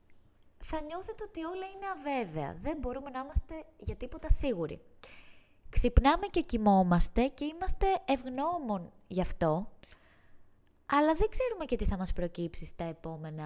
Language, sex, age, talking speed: Greek, female, 20-39, 140 wpm